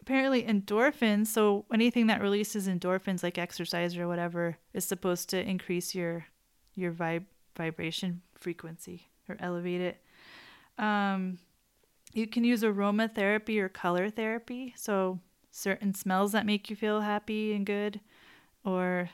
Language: English